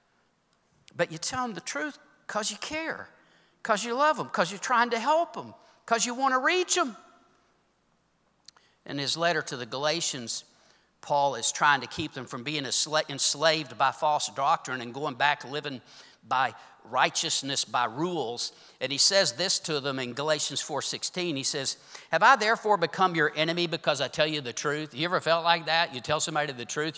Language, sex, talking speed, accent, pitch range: English, male, 185 wpm, American, 150-195 Hz